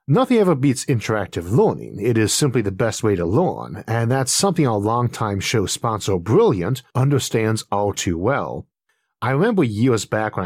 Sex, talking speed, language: male, 170 wpm, English